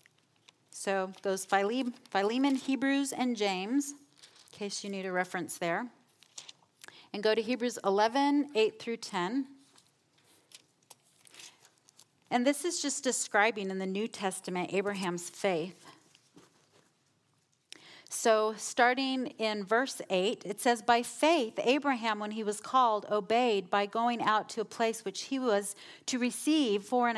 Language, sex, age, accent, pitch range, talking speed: English, female, 40-59, American, 195-255 Hz, 130 wpm